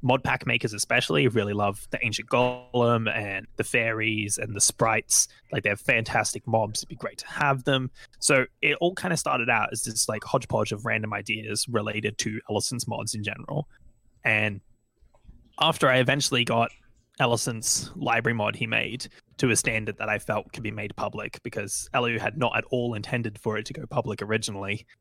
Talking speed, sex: 190 wpm, male